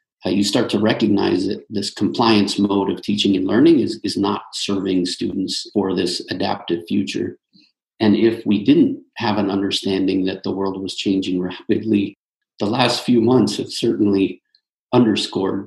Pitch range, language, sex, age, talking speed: 100-115 Hz, English, male, 40-59, 160 wpm